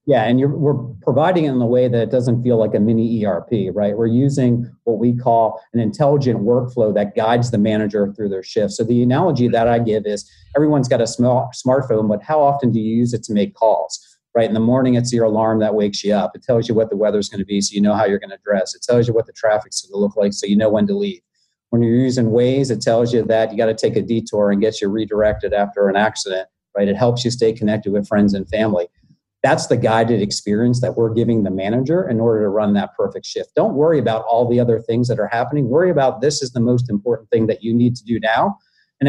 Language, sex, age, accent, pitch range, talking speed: English, male, 40-59, American, 110-125 Hz, 260 wpm